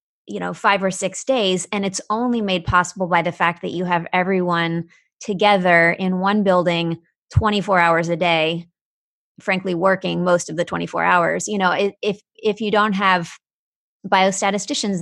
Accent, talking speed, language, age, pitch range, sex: American, 165 wpm, English, 20-39, 180-210 Hz, female